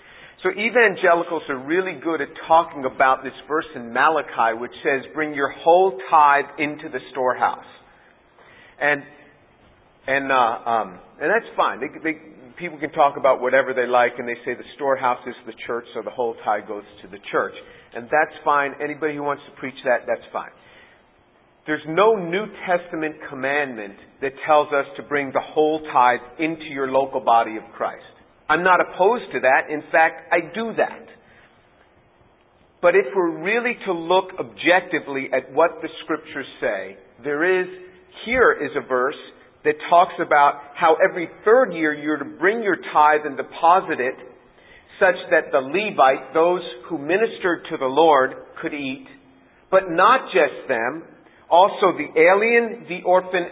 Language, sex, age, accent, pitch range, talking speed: English, male, 50-69, American, 140-175 Hz, 165 wpm